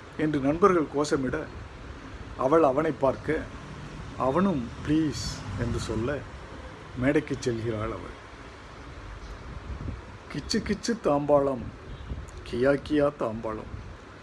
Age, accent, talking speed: 50-69, native, 80 wpm